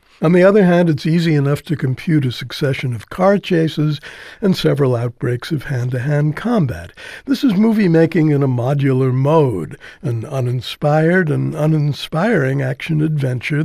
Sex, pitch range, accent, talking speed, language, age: male, 130-170 Hz, American, 140 wpm, English, 60-79